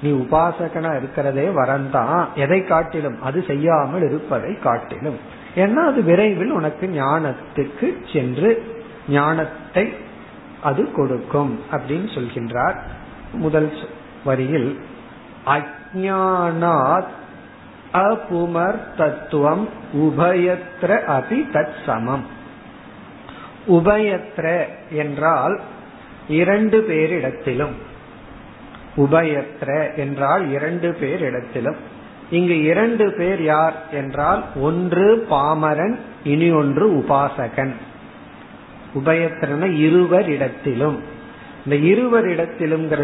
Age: 50-69